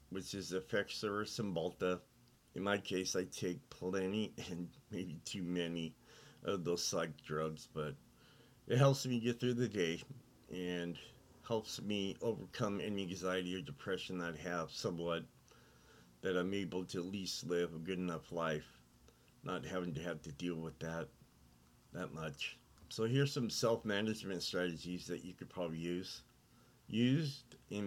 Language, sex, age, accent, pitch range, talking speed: English, male, 50-69, American, 90-110 Hz, 155 wpm